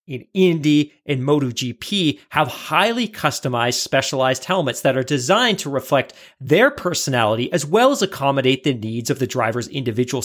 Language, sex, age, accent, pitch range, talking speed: English, male, 40-59, American, 130-185 Hz, 150 wpm